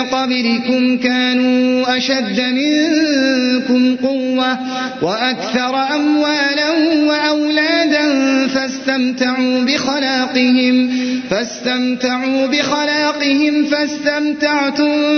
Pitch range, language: 255-300 Hz, Arabic